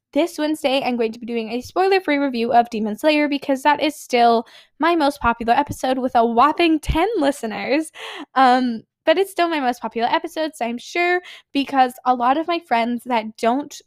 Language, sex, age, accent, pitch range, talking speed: English, female, 10-29, American, 230-310 Hz, 195 wpm